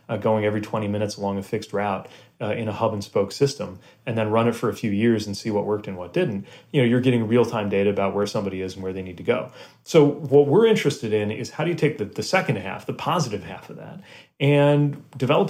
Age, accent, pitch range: 30-49, American, 105-140 Hz